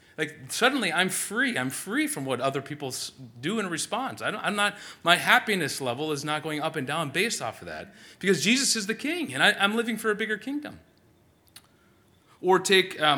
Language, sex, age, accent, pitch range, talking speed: English, male, 30-49, American, 125-185 Hz, 210 wpm